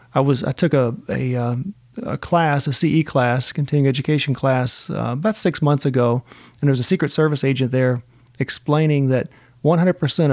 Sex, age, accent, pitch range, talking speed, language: male, 40-59, American, 125-165 Hz, 170 wpm, English